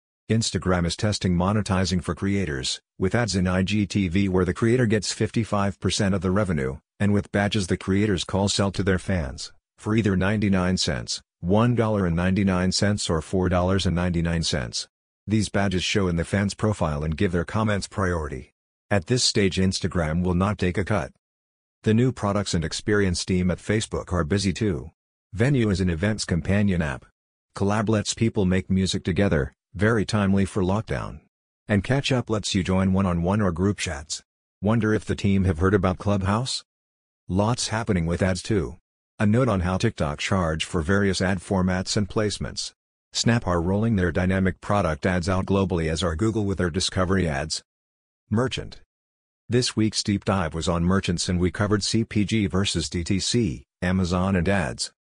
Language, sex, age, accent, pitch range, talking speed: English, male, 50-69, American, 90-105 Hz, 165 wpm